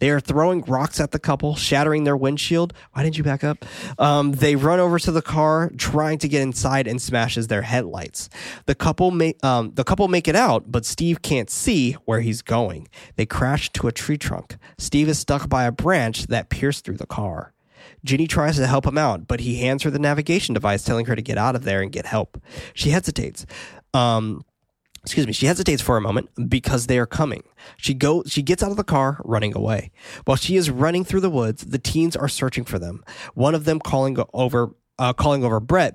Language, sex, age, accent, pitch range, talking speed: English, male, 20-39, American, 115-155 Hz, 215 wpm